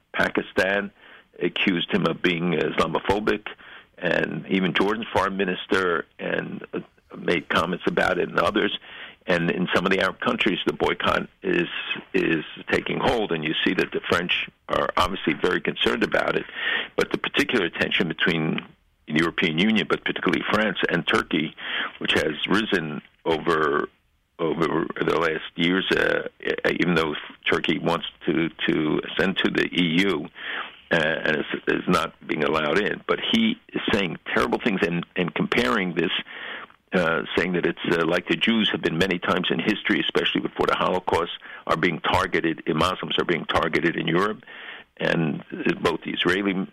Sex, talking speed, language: male, 155 wpm, English